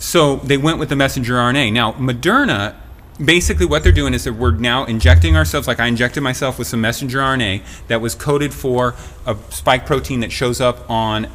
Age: 30-49